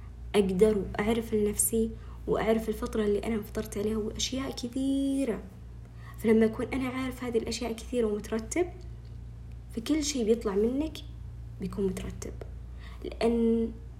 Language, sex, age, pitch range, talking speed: Arabic, female, 20-39, 185-230 Hz, 115 wpm